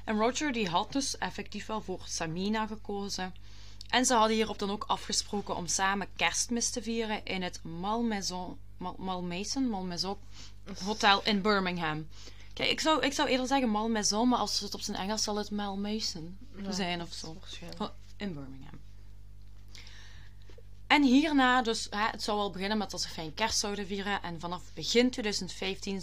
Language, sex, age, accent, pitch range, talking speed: Dutch, female, 20-39, Belgian, 155-210 Hz, 160 wpm